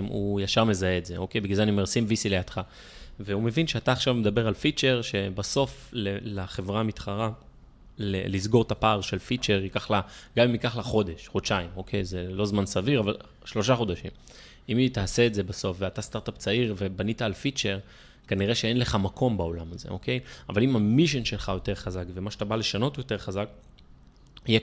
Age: 20-39